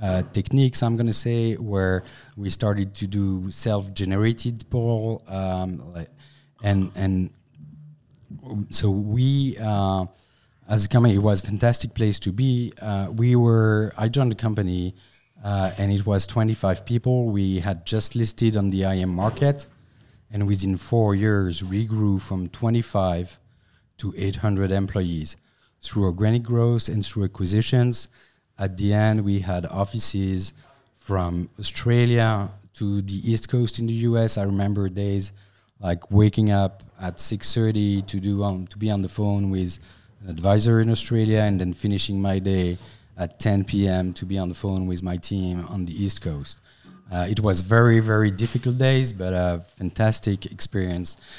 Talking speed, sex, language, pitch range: 155 wpm, male, English, 95-115 Hz